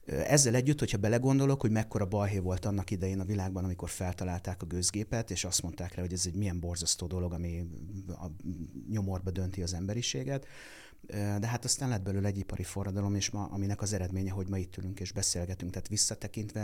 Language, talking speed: Hungarian, 190 wpm